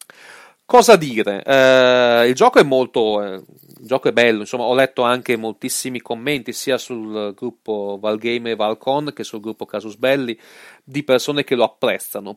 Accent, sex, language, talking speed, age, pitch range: native, male, Italian, 165 wpm, 40-59, 100-125 Hz